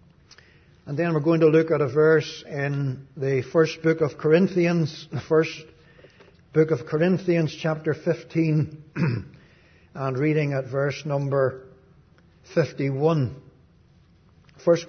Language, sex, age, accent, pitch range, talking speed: English, male, 60-79, Irish, 150-175 Hz, 115 wpm